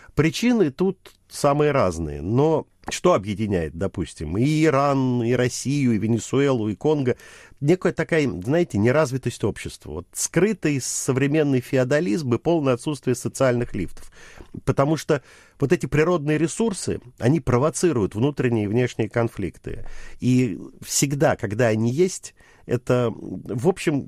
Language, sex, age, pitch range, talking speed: Russian, male, 50-69, 115-150 Hz, 120 wpm